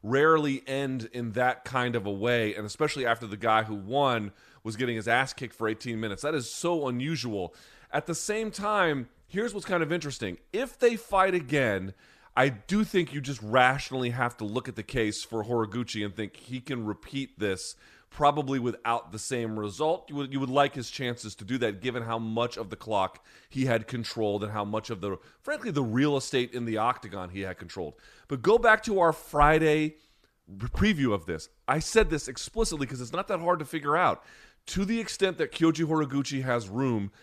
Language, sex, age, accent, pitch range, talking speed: English, male, 30-49, American, 115-155 Hz, 205 wpm